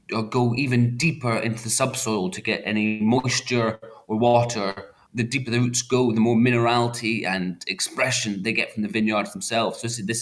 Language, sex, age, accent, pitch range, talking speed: English, male, 20-39, British, 110-125 Hz, 190 wpm